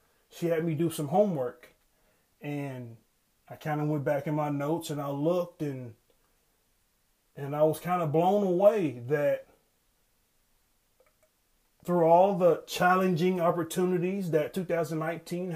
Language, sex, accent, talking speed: English, male, American, 130 wpm